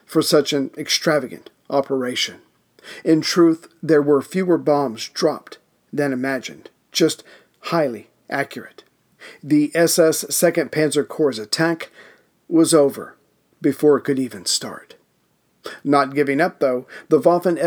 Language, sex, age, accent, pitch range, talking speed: English, male, 50-69, American, 140-165 Hz, 120 wpm